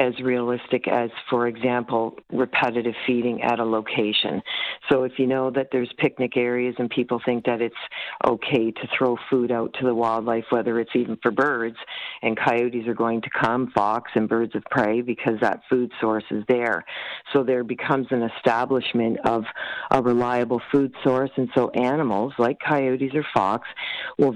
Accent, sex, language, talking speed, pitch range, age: American, female, English, 175 wpm, 115-130 Hz, 50-69